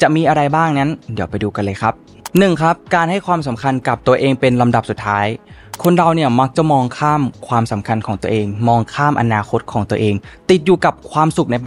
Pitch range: 110-140 Hz